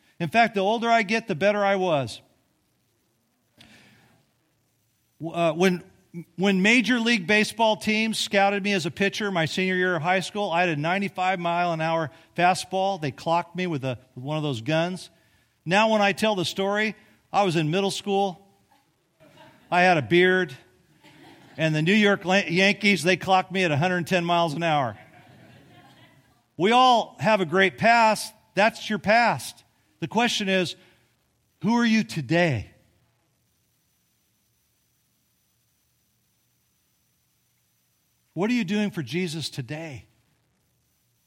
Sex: male